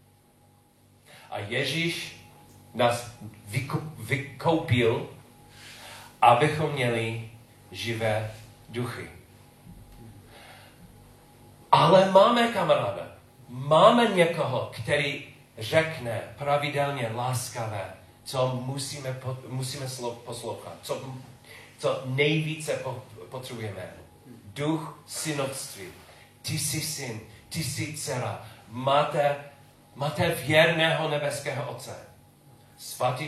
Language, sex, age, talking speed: Czech, male, 40-59, 70 wpm